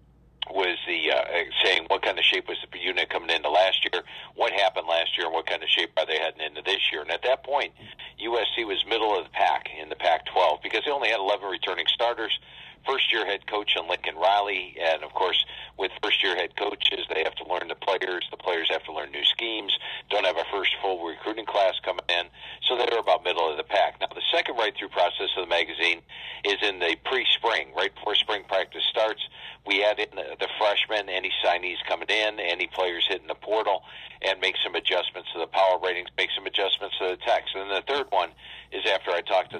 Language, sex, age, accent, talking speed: English, male, 50-69, American, 225 wpm